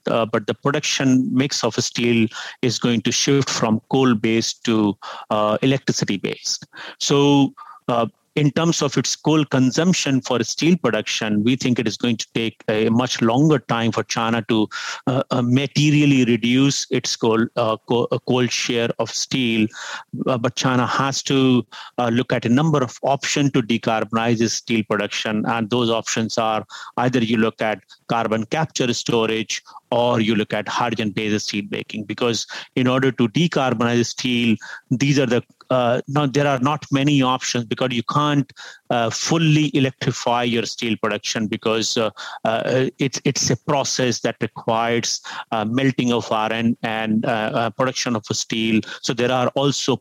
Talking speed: 160 wpm